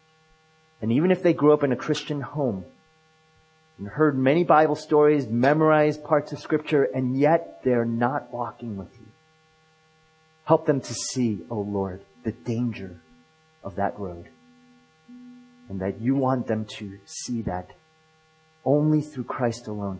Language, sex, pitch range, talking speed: English, male, 105-160 Hz, 145 wpm